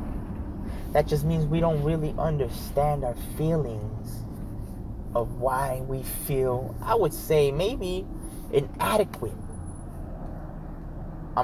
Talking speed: 100 wpm